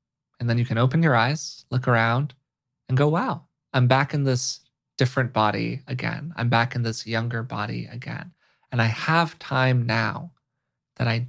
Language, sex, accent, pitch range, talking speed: English, male, American, 120-145 Hz, 175 wpm